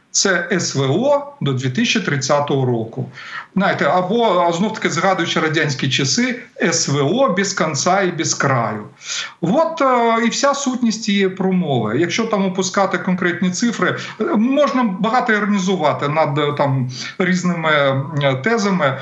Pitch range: 150-210 Hz